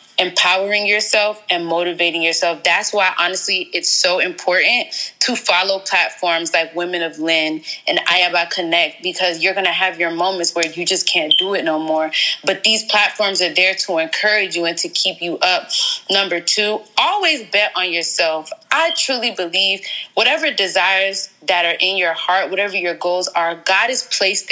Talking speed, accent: 175 wpm, American